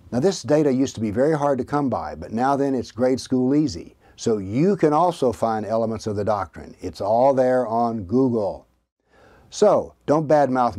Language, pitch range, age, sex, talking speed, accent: English, 105-135 Hz, 60-79, male, 195 wpm, American